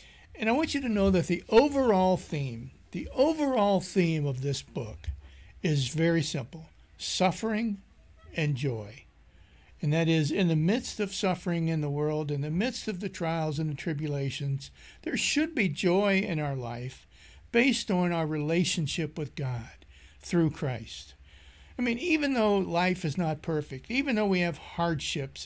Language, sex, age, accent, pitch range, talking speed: English, male, 60-79, American, 145-200 Hz, 165 wpm